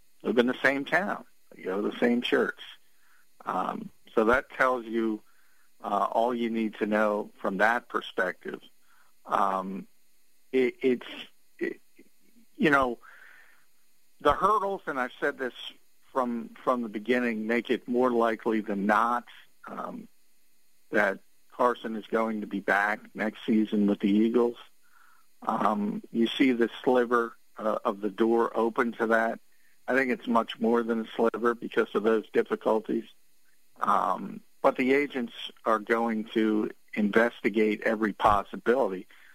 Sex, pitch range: male, 110-130 Hz